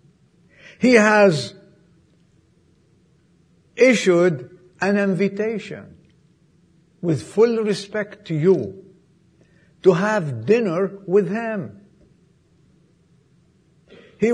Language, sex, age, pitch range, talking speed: English, male, 60-79, 165-215 Hz, 65 wpm